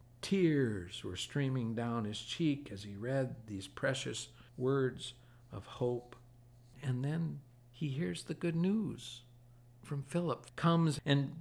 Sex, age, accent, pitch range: male, 60-79, American, 110-140 Hz